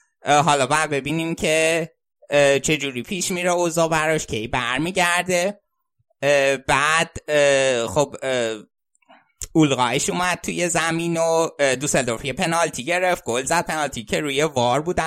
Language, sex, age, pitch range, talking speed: Persian, male, 20-39, 130-165 Hz, 120 wpm